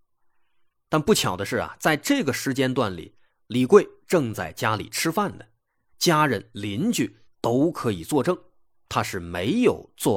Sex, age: male, 30-49